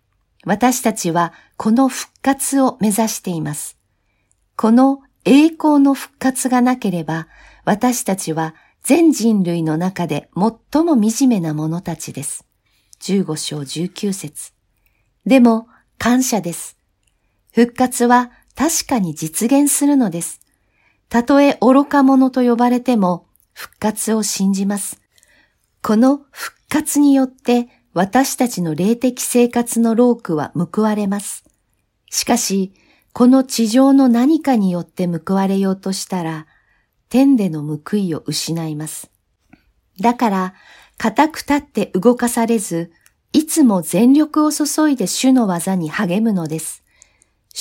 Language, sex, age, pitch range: Japanese, female, 50-69, 165-250 Hz